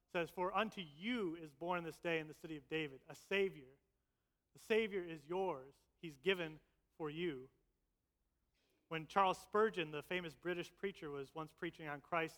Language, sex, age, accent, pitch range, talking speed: English, male, 30-49, American, 150-195 Hz, 170 wpm